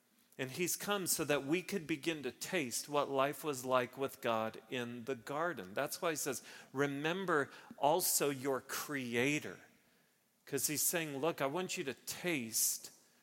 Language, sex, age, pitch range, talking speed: English, male, 40-59, 120-165 Hz, 165 wpm